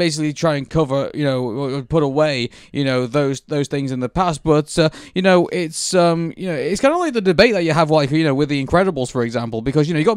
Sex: male